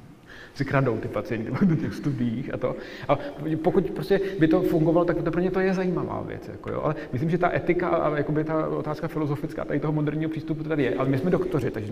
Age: 30-49